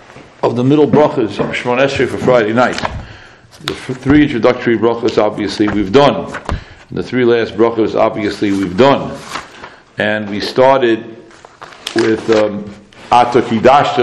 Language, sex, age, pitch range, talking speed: English, male, 60-79, 105-145 Hz, 130 wpm